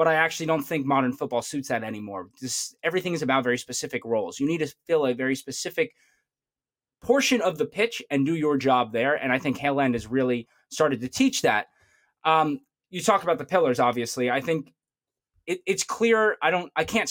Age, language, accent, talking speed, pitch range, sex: 20-39, English, American, 210 wpm, 125-160 Hz, male